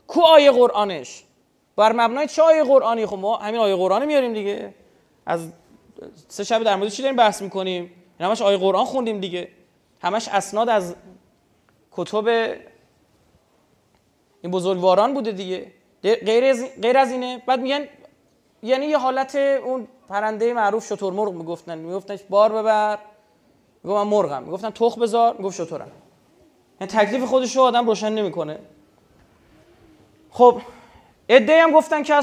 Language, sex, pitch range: Persian, male, 185-250 Hz